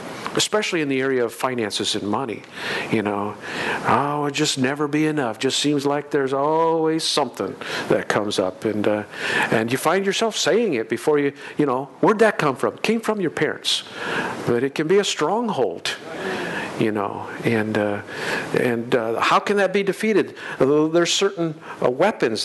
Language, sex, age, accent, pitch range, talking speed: English, male, 50-69, American, 120-160 Hz, 185 wpm